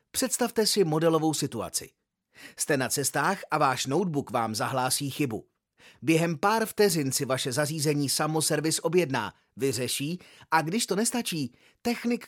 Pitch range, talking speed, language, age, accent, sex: 140-185 Hz, 135 wpm, Czech, 30-49, native, male